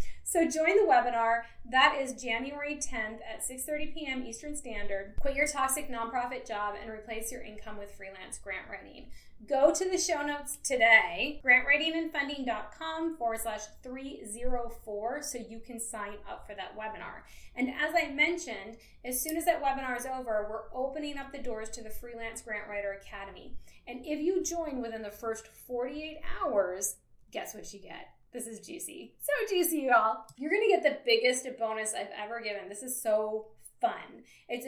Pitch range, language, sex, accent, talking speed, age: 220-295 Hz, English, female, American, 175 wpm, 20-39